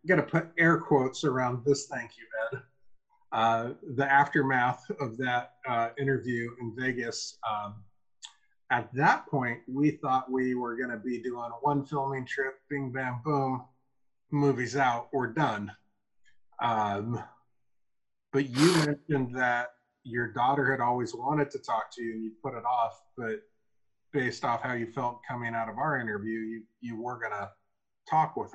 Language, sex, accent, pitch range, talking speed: English, male, American, 110-135 Hz, 165 wpm